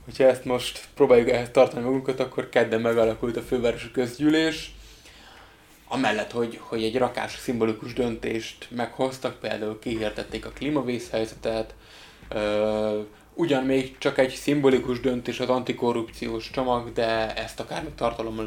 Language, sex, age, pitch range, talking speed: Hungarian, male, 20-39, 110-125 Hz, 125 wpm